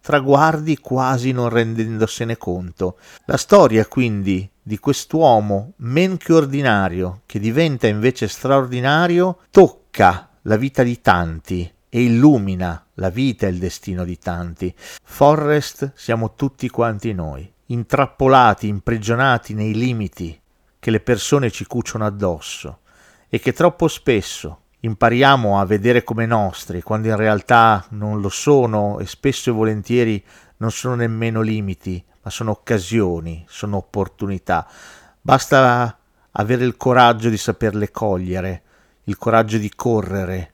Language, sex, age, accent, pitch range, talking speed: Italian, male, 40-59, native, 100-130 Hz, 125 wpm